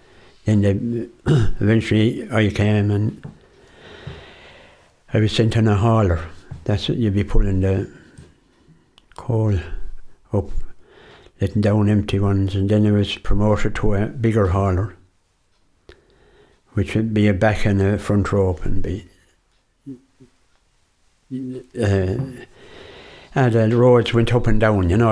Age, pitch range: 60-79, 95-110 Hz